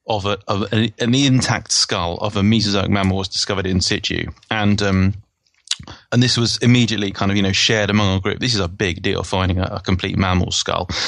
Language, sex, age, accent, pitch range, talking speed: English, male, 30-49, British, 95-110 Hz, 215 wpm